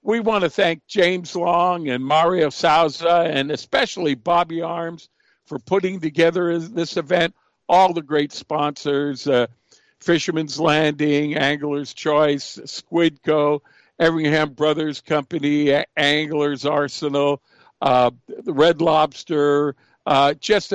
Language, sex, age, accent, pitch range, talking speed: English, male, 60-79, American, 135-170 Hz, 115 wpm